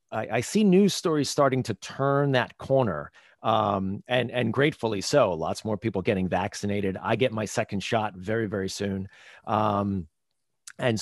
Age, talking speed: 40-59, 160 wpm